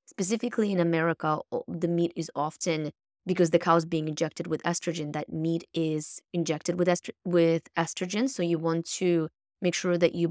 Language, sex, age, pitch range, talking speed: English, female, 20-39, 160-185 Hz, 175 wpm